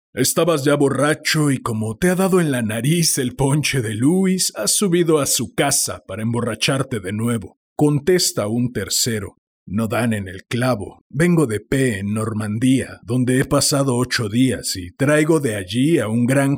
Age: 50-69